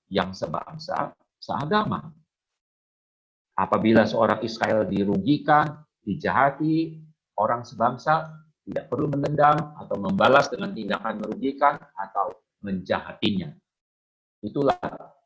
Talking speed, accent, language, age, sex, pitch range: 85 wpm, native, Indonesian, 50-69, male, 105-160 Hz